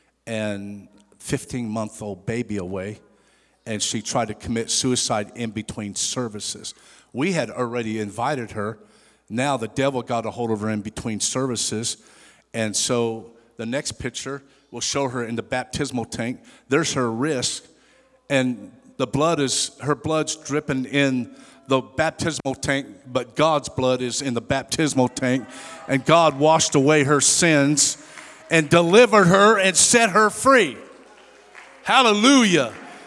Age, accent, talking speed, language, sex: 50-69, American, 145 wpm, English, male